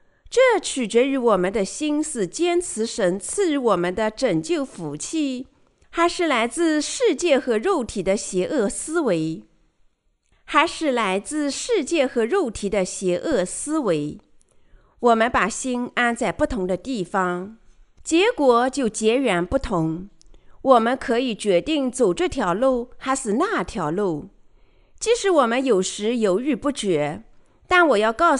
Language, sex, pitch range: Chinese, female, 205-300 Hz